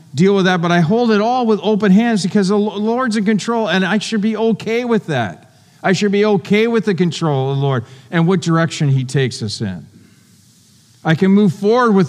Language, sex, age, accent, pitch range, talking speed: English, male, 50-69, American, 120-165 Hz, 225 wpm